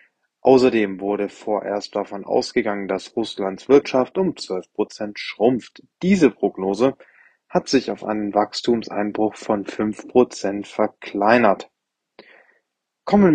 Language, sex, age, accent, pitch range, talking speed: English, male, 20-39, German, 100-120 Hz, 100 wpm